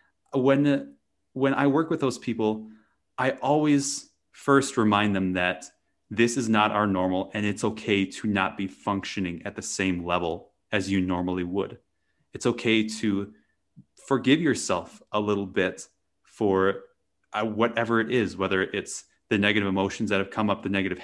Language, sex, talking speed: English, male, 160 wpm